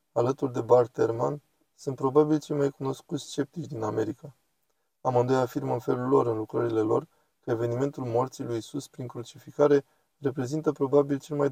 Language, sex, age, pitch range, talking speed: Romanian, male, 20-39, 125-155 Hz, 155 wpm